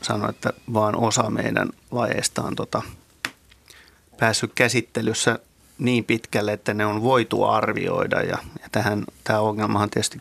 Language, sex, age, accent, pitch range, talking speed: Finnish, male, 30-49, native, 110-125 Hz, 135 wpm